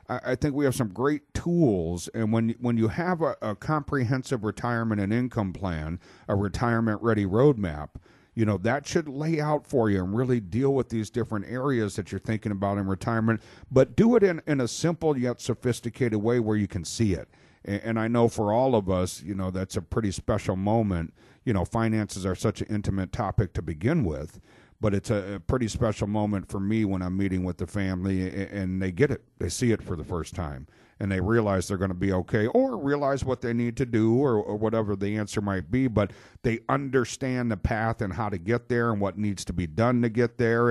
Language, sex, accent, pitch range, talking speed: English, male, American, 100-125 Hz, 220 wpm